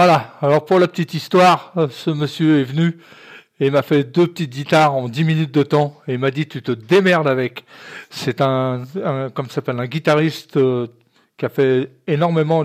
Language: French